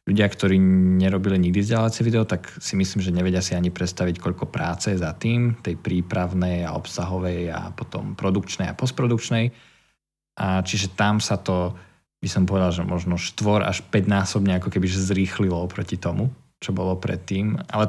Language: Slovak